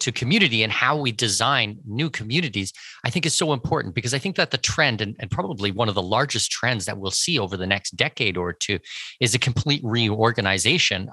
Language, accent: English, American